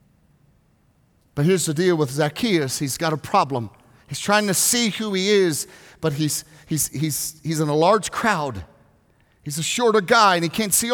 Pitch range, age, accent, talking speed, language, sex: 160-225 Hz, 40-59, American, 185 wpm, English, male